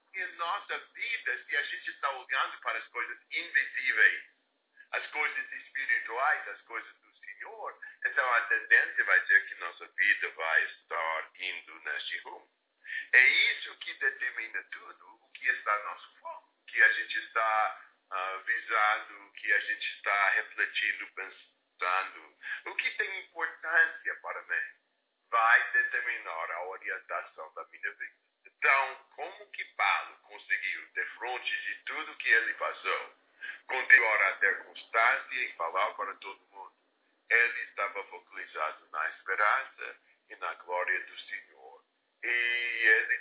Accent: Brazilian